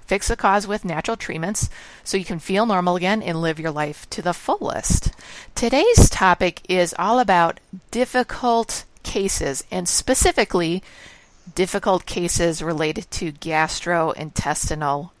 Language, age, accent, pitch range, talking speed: English, 50-69, American, 160-195 Hz, 130 wpm